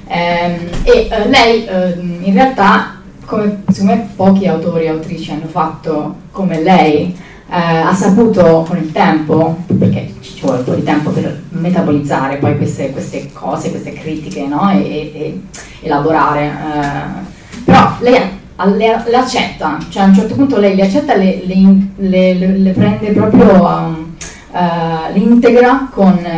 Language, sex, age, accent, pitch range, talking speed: Italian, female, 20-39, native, 170-205 Hz, 155 wpm